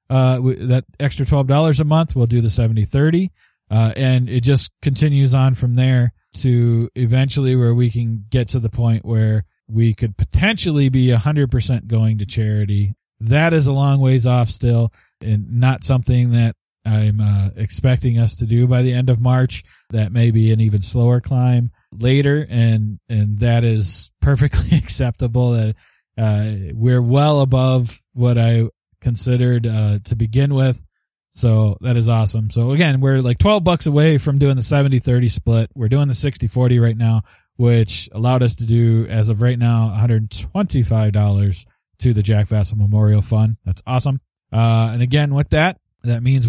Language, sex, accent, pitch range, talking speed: English, male, American, 110-130 Hz, 175 wpm